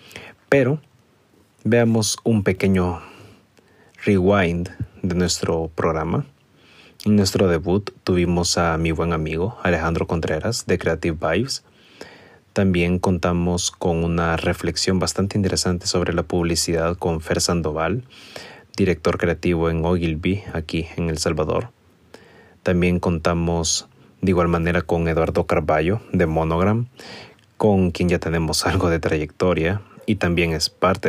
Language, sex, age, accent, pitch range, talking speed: Spanish, male, 30-49, Mexican, 85-95 Hz, 120 wpm